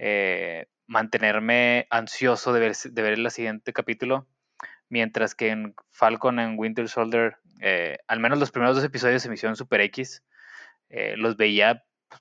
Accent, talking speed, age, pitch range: Mexican, 155 wpm, 20-39, 110-125 Hz